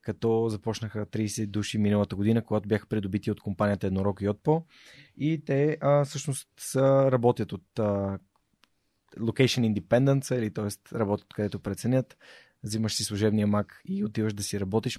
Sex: male